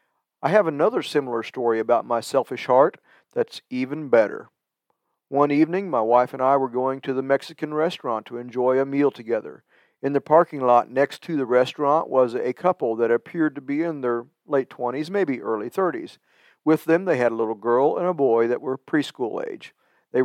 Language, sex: English, male